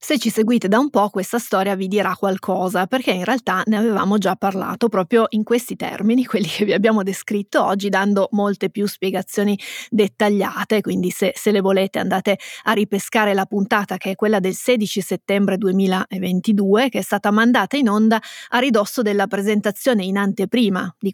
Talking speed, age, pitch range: 180 wpm, 20-39, 195-225 Hz